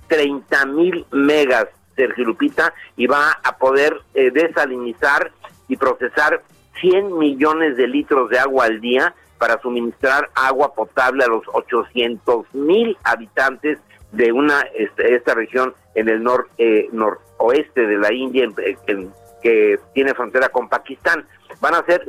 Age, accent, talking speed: 50-69, Mexican, 140 wpm